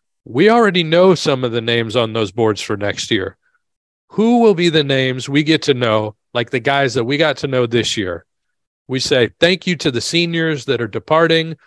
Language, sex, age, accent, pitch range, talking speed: English, male, 40-59, American, 125-160 Hz, 215 wpm